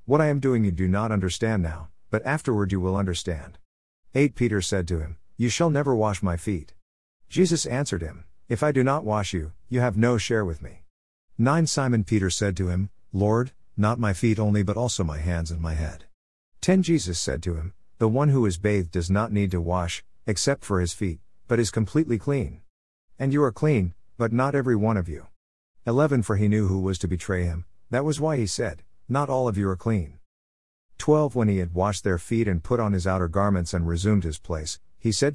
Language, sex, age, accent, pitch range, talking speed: English, male, 50-69, American, 90-120 Hz, 220 wpm